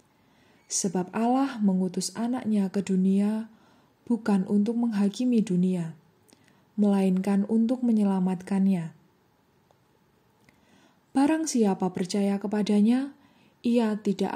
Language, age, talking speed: Indonesian, 20-39, 80 wpm